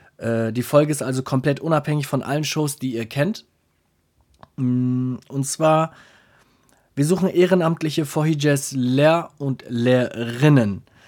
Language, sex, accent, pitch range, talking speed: German, male, German, 120-145 Hz, 120 wpm